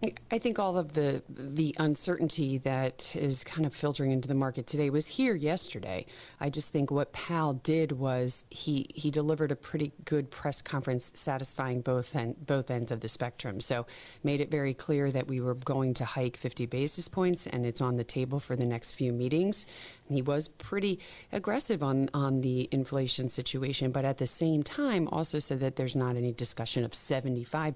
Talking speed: 190 wpm